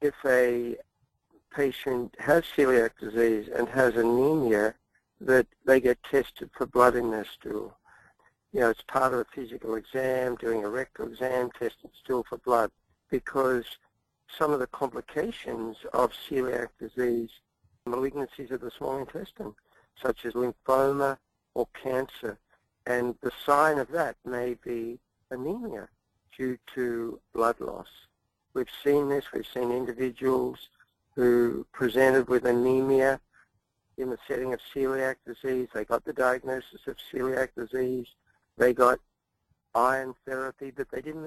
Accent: American